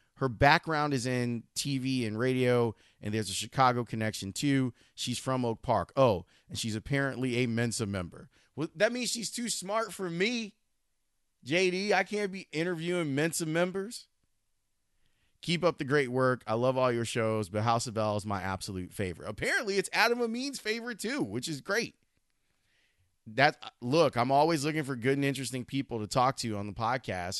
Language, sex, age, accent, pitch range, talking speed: English, male, 30-49, American, 110-145 Hz, 180 wpm